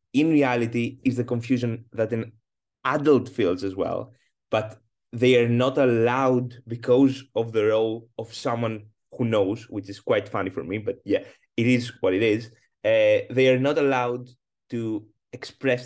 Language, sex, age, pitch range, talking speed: English, male, 20-39, 120-135 Hz, 165 wpm